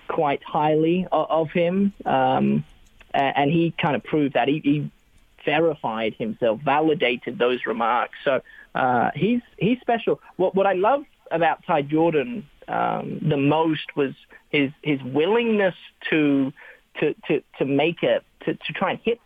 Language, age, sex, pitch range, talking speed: English, 30-49, male, 145-200 Hz, 150 wpm